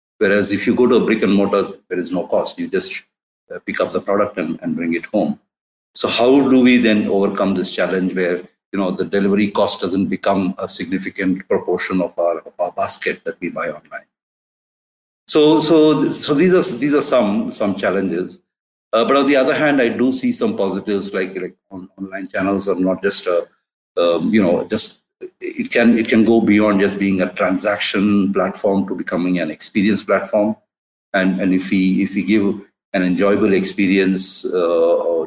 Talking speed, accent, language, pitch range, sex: 195 wpm, Indian, English, 95-130 Hz, male